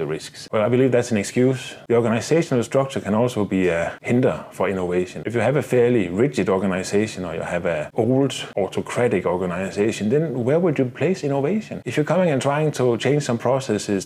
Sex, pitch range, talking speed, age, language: male, 95-125 Hz, 200 wpm, 30-49, English